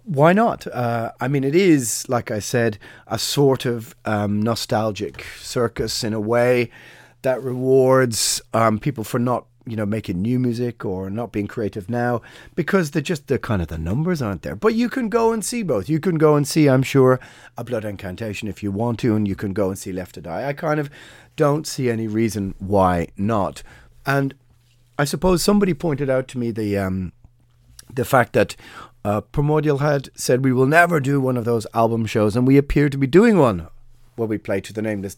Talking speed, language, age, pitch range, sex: 210 wpm, English, 30-49, 100-135 Hz, male